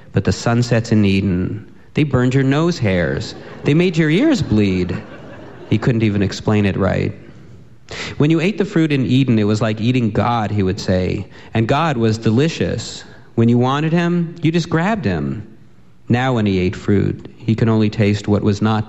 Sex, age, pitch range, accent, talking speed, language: male, 40-59, 100-125 Hz, American, 190 wpm, English